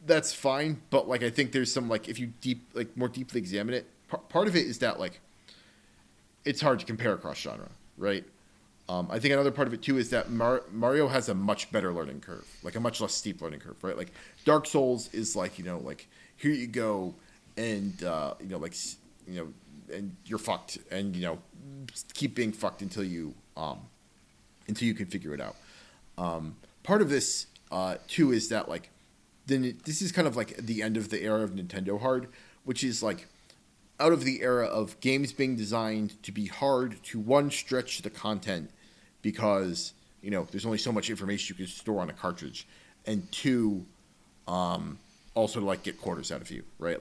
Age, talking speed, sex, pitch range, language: 30-49, 200 wpm, male, 100-130 Hz, English